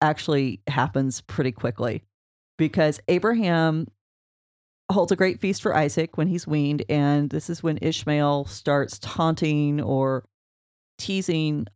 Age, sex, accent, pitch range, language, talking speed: 30-49, female, American, 130-170 Hz, English, 120 wpm